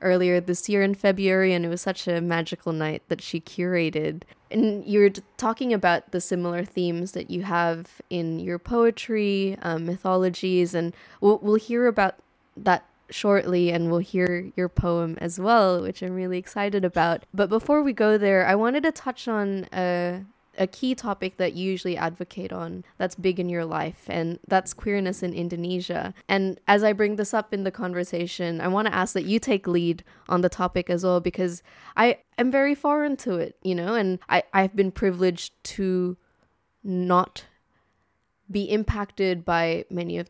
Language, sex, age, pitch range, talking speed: English, female, 20-39, 175-200 Hz, 180 wpm